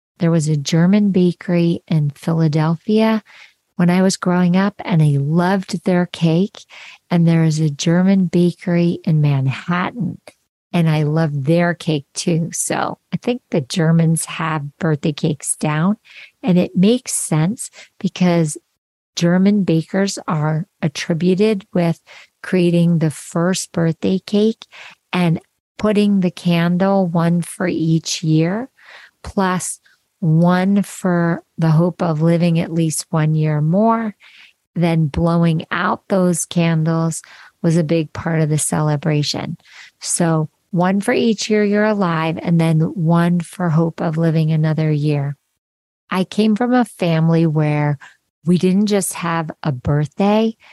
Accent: American